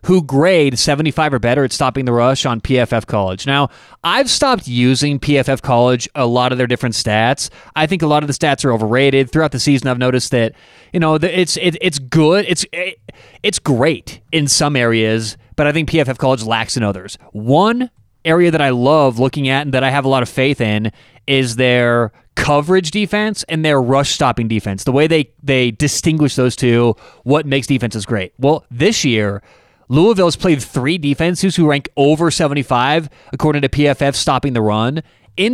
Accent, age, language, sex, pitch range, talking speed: American, 30-49, English, male, 120-155 Hz, 190 wpm